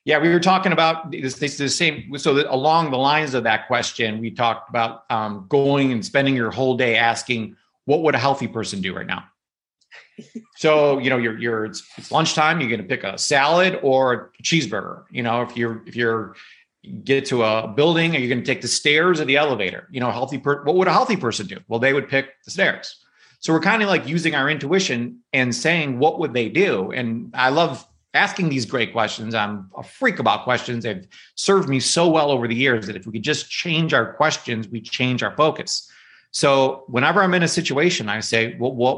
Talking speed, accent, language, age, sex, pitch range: 225 wpm, American, English, 30-49, male, 120-160 Hz